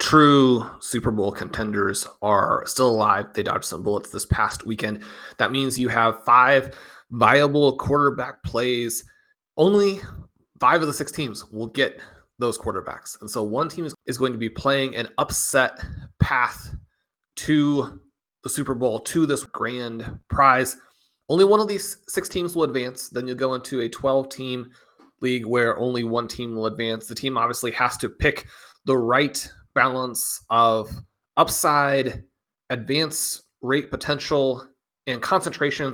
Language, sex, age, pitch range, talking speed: English, male, 20-39, 115-140 Hz, 150 wpm